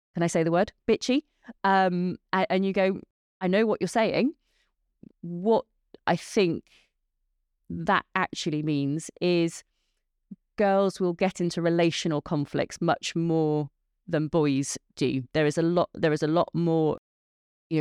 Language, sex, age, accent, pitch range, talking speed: English, female, 30-49, British, 155-185 Hz, 145 wpm